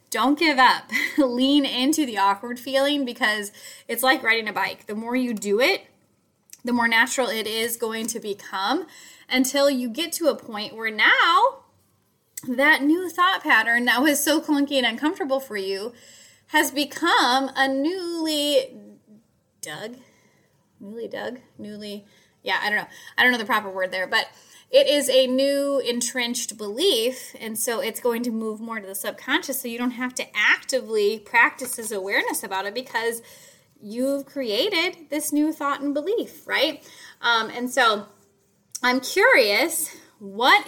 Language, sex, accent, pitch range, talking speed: English, female, American, 215-285 Hz, 160 wpm